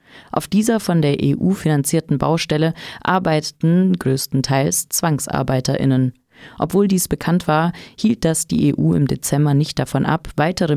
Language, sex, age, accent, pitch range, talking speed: German, female, 30-49, German, 135-165 Hz, 135 wpm